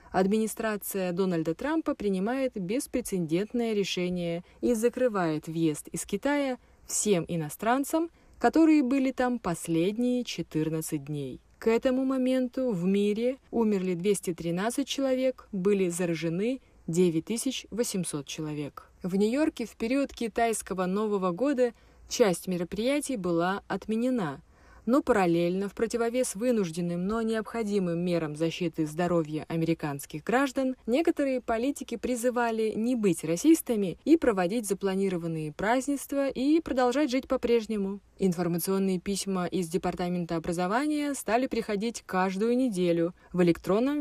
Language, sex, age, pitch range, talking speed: Russian, female, 20-39, 180-250 Hz, 110 wpm